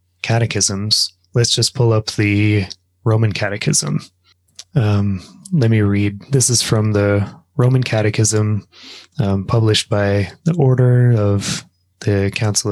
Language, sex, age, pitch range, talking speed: English, male, 20-39, 100-125 Hz, 125 wpm